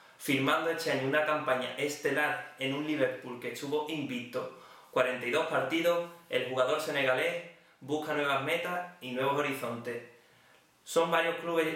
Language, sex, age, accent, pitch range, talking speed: Spanish, male, 30-49, Spanish, 130-155 Hz, 135 wpm